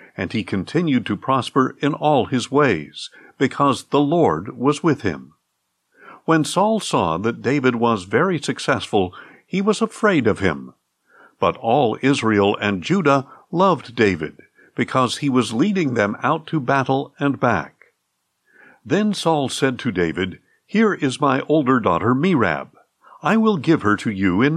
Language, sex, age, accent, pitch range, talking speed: English, male, 60-79, American, 115-165 Hz, 155 wpm